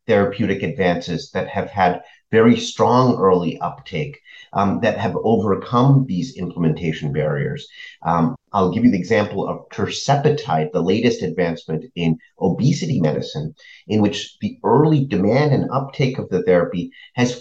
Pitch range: 90-135 Hz